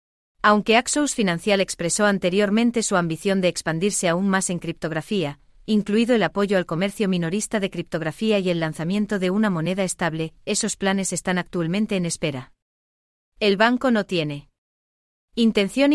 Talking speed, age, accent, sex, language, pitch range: 145 wpm, 30-49, Spanish, female, English, 170-210 Hz